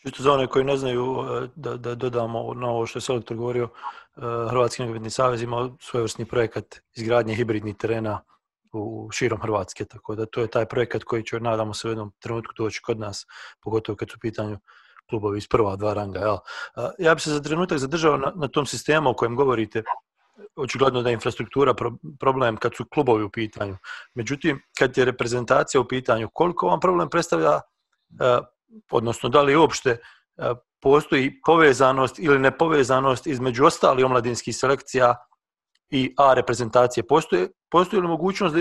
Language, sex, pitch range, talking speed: English, male, 115-150 Hz, 170 wpm